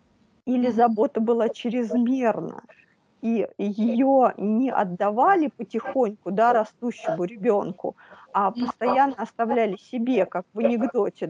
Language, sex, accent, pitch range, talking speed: Russian, female, native, 200-255 Hz, 100 wpm